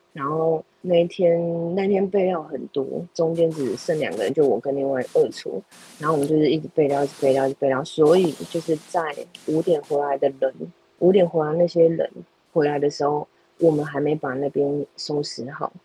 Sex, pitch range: female, 145-175 Hz